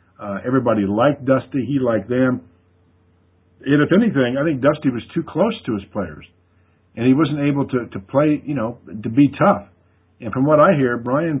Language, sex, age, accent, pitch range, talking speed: English, male, 50-69, American, 100-135 Hz, 195 wpm